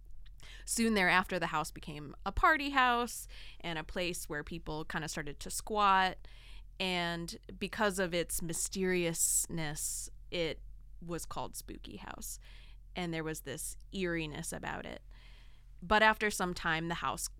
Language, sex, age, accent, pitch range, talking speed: English, female, 20-39, American, 150-185 Hz, 140 wpm